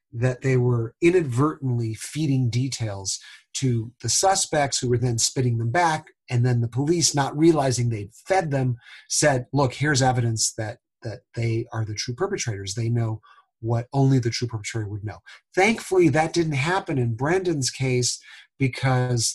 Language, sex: English, male